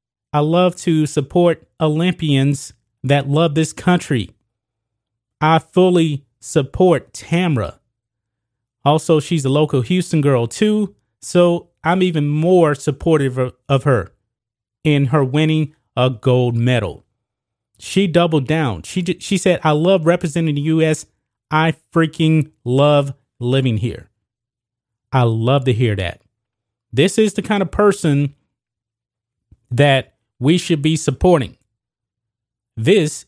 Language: English